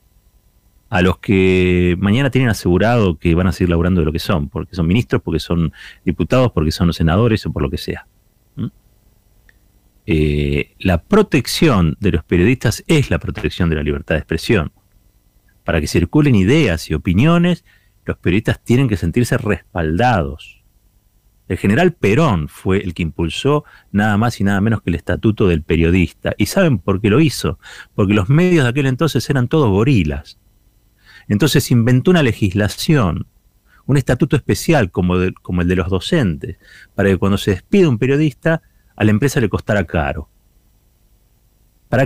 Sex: male